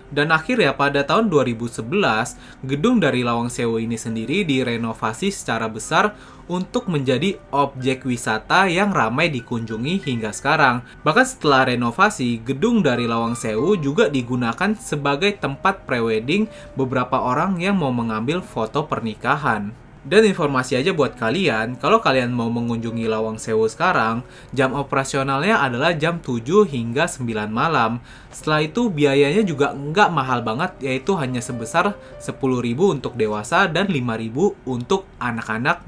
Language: Indonesian